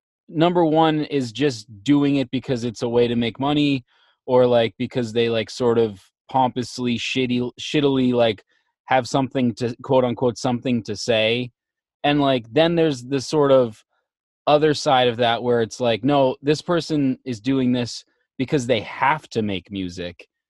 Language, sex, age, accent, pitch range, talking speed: English, male, 20-39, American, 120-140 Hz, 170 wpm